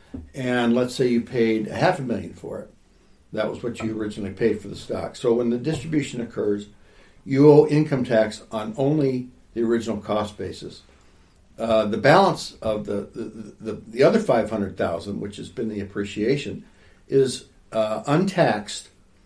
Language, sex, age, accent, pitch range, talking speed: English, male, 60-79, American, 95-130 Hz, 165 wpm